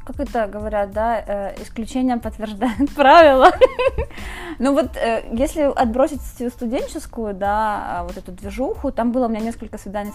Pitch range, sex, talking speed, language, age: 200-250 Hz, female, 130 wpm, Ukrainian, 20-39